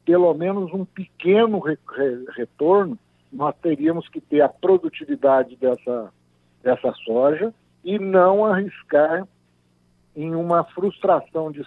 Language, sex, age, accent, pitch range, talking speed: Portuguese, male, 60-79, Brazilian, 140-190 Hz, 110 wpm